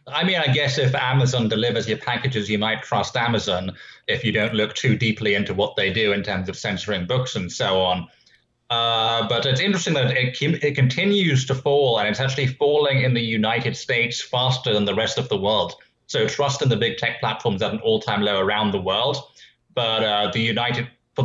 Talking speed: 210 wpm